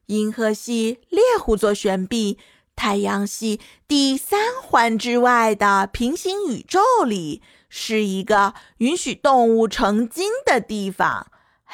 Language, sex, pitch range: Chinese, female, 205-270 Hz